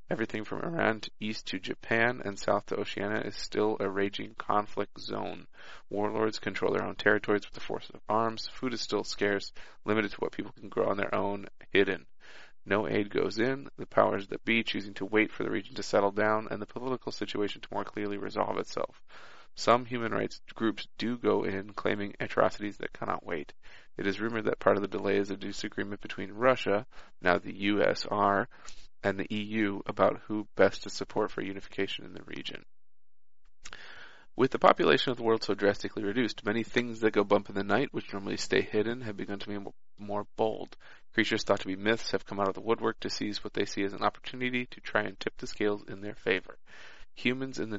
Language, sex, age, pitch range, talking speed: English, male, 30-49, 100-115 Hz, 205 wpm